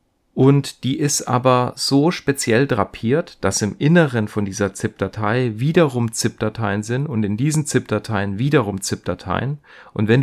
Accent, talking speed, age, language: German, 140 wpm, 40-59, German